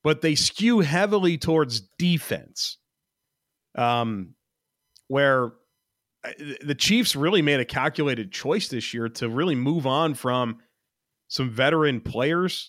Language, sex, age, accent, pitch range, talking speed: English, male, 30-49, American, 115-150 Hz, 120 wpm